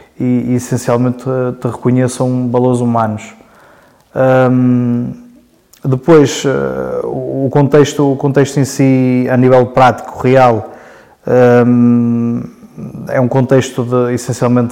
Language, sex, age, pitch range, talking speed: Portuguese, male, 20-39, 120-130 Hz, 80 wpm